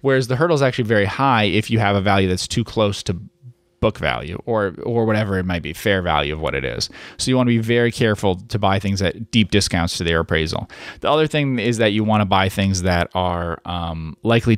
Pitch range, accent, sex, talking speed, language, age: 90-110 Hz, American, male, 245 wpm, English, 30-49